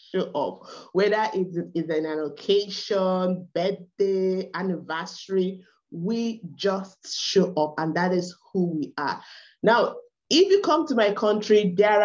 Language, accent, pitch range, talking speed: English, Nigerian, 175-245 Hz, 140 wpm